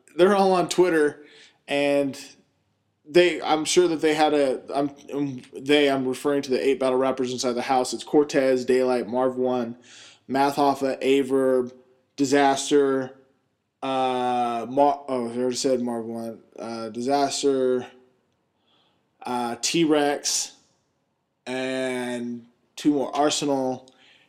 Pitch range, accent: 125-145 Hz, American